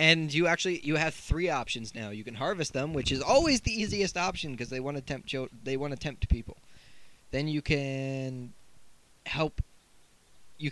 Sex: male